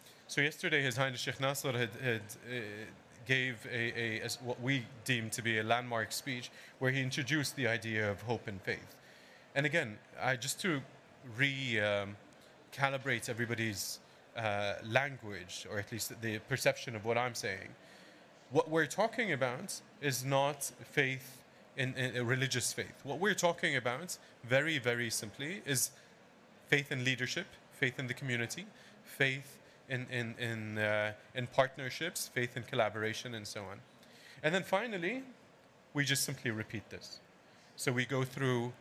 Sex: male